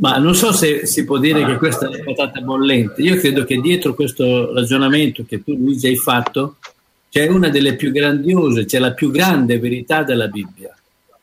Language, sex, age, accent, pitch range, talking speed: Italian, male, 50-69, native, 125-165 Hz, 190 wpm